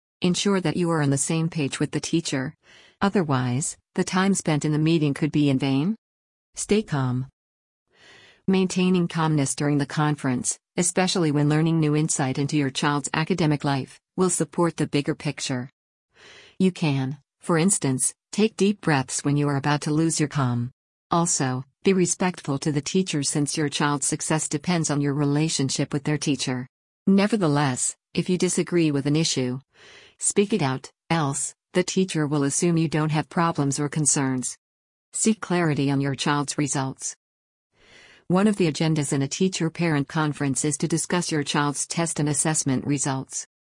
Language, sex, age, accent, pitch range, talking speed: English, female, 50-69, American, 140-170 Hz, 165 wpm